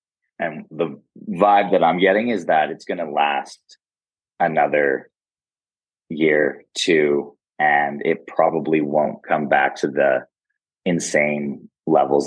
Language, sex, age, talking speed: English, male, 20-39, 120 wpm